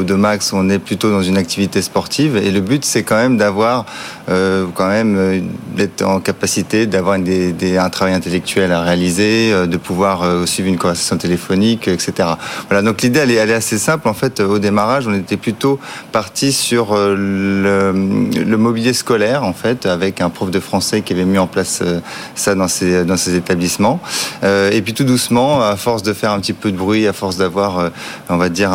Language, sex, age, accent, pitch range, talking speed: French, male, 30-49, French, 95-110 Hz, 215 wpm